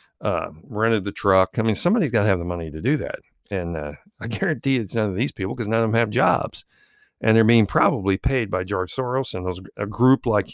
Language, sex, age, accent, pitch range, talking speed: English, male, 50-69, American, 95-120 Hz, 245 wpm